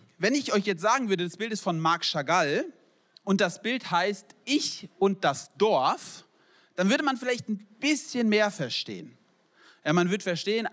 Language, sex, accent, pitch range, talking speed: German, male, German, 165-220 Hz, 180 wpm